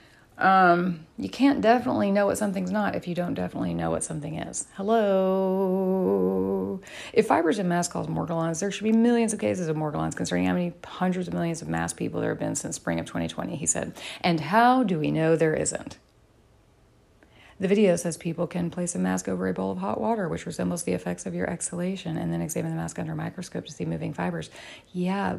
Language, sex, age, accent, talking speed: English, female, 30-49, American, 215 wpm